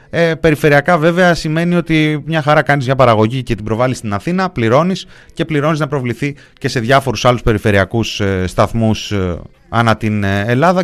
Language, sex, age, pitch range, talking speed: Greek, male, 30-49, 95-140 Hz, 170 wpm